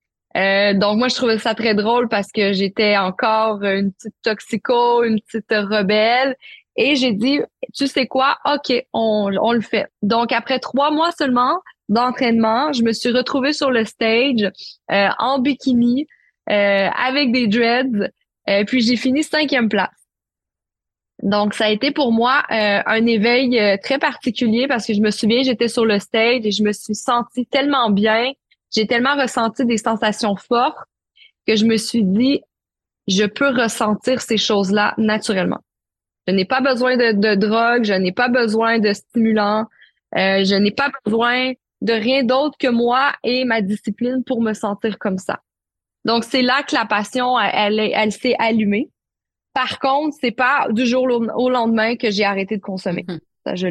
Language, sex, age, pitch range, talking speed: French, female, 20-39, 205-255 Hz, 175 wpm